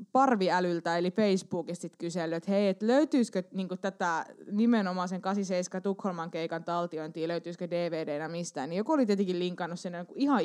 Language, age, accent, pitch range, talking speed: Finnish, 20-39, native, 185-250 Hz, 145 wpm